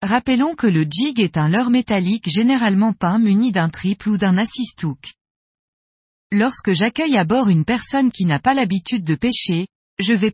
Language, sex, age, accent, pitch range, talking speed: French, female, 20-39, French, 180-245 Hz, 175 wpm